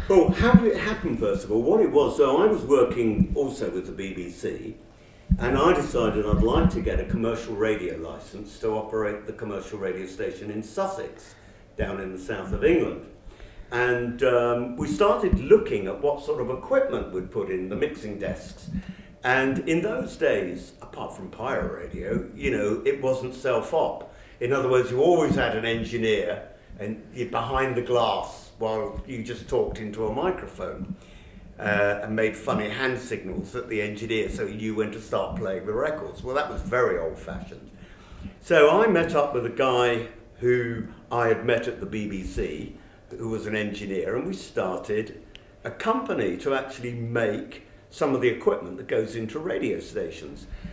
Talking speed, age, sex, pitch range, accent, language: 180 wpm, 50-69, male, 105-130 Hz, British, English